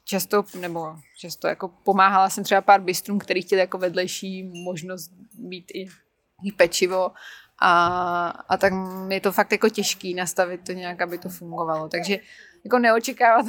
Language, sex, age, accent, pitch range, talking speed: Czech, female, 20-39, native, 180-210 Hz, 150 wpm